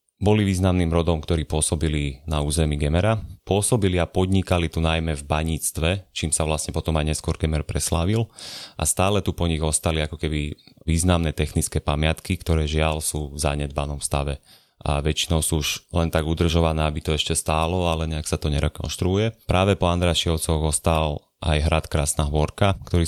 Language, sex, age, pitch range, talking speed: Slovak, male, 30-49, 75-90 Hz, 170 wpm